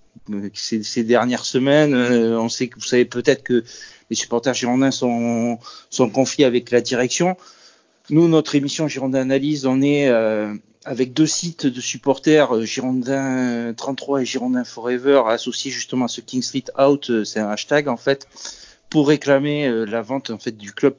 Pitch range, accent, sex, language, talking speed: 115-140 Hz, French, male, French, 175 wpm